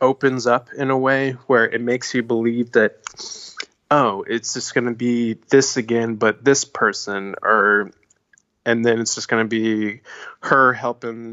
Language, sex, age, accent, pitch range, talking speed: English, male, 20-39, American, 115-130 Hz, 170 wpm